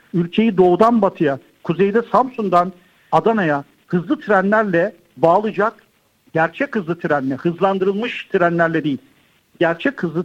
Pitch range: 170-220 Hz